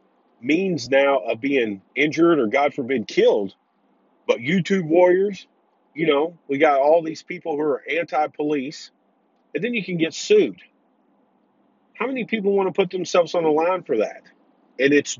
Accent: American